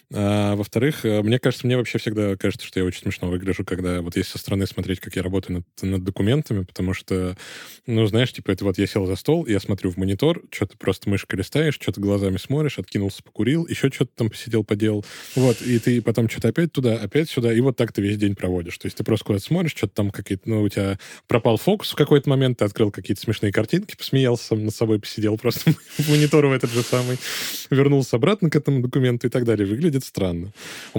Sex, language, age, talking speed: male, Russian, 20-39, 215 wpm